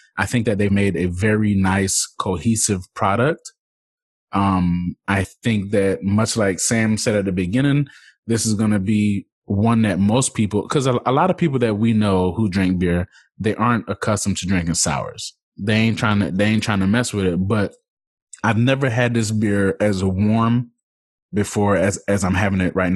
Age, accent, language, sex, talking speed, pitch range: 20-39, American, English, male, 195 wpm, 100-120 Hz